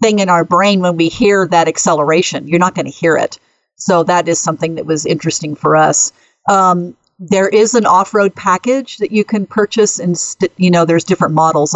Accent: American